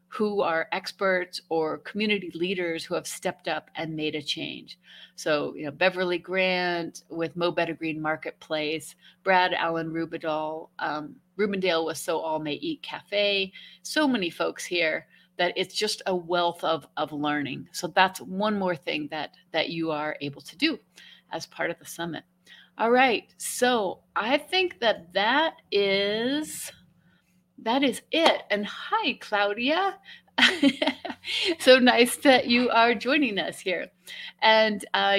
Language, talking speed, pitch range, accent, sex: English, 150 wpm, 165-220 Hz, American, female